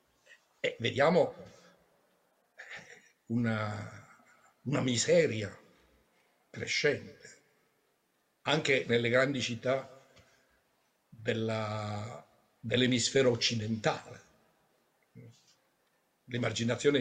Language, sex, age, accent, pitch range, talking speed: Italian, male, 60-79, native, 115-185 Hz, 50 wpm